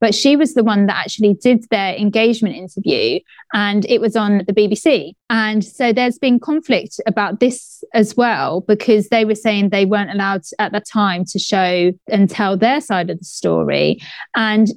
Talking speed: 185 wpm